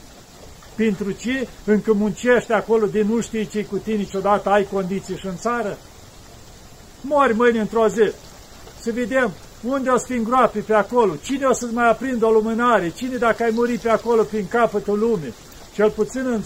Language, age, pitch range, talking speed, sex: Romanian, 50-69, 200-240 Hz, 180 wpm, male